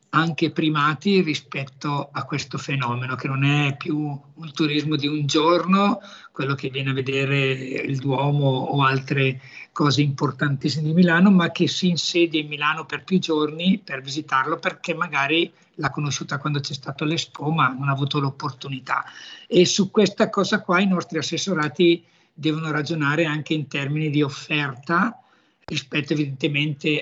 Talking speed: 155 wpm